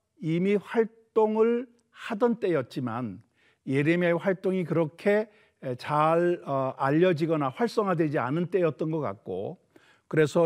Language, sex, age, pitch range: Korean, male, 50-69, 140-205 Hz